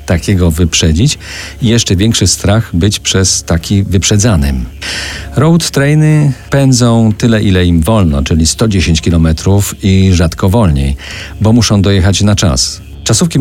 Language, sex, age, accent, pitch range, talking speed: Polish, male, 40-59, native, 80-105 Hz, 130 wpm